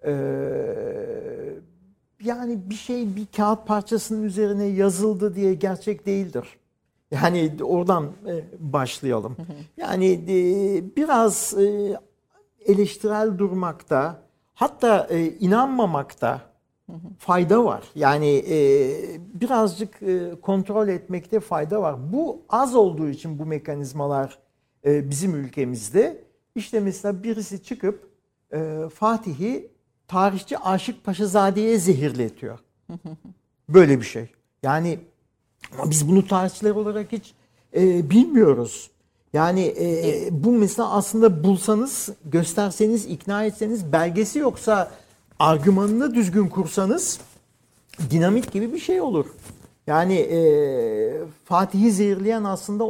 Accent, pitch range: native, 160-220 Hz